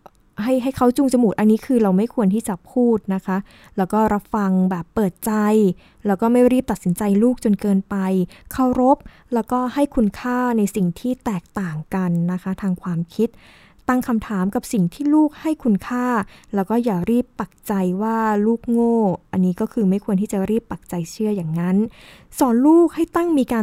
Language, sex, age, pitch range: Thai, female, 20-39, 190-240 Hz